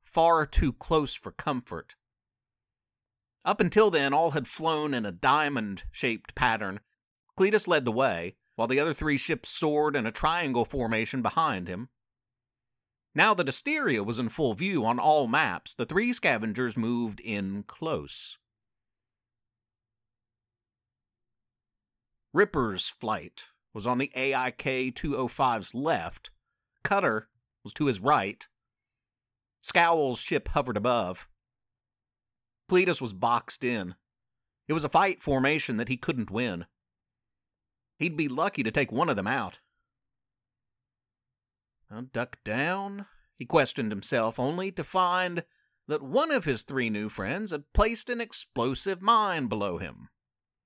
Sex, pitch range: male, 110-150 Hz